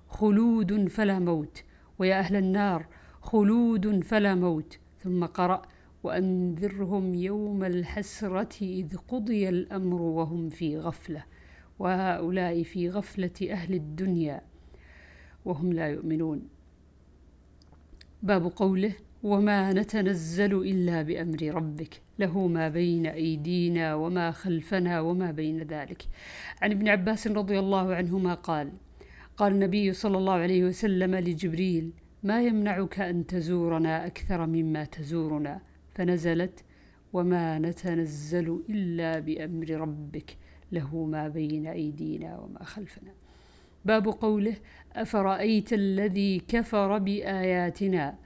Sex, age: female, 50-69